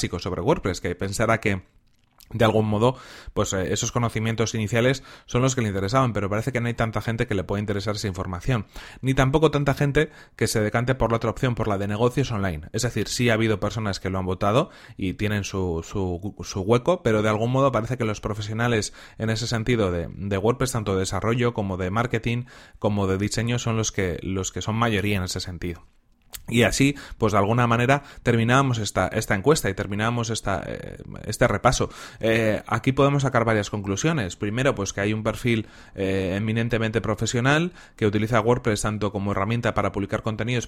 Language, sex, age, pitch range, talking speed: Spanish, male, 30-49, 100-120 Hz, 200 wpm